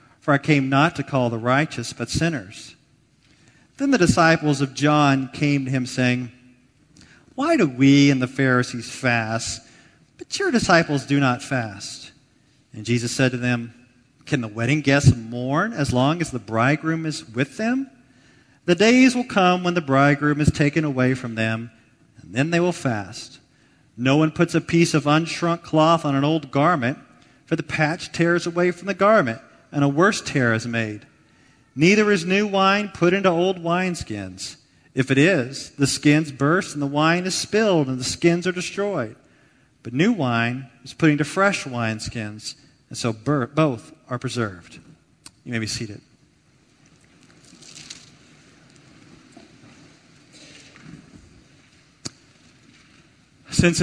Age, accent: 40-59, American